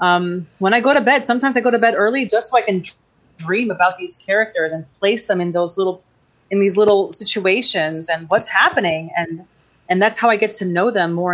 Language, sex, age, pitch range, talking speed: English, female, 30-49, 175-225 Hz, 235 wpm